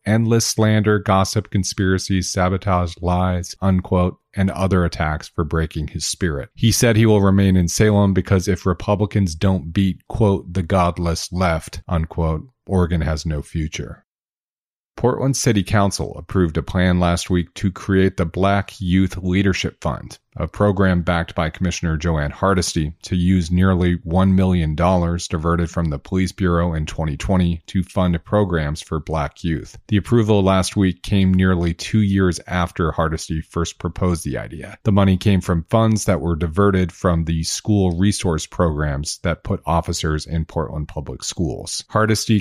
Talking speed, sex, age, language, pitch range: 155 wpm, male, 40-59, English, 85-95 Hz